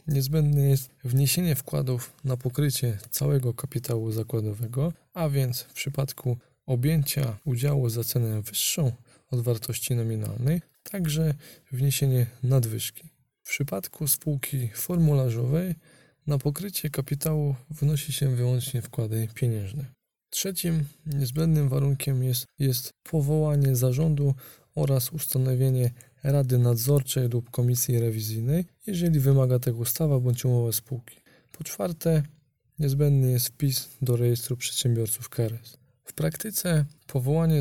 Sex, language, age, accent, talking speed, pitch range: male, Polish, 20-39, native, 110 wpm, 120-150 Hz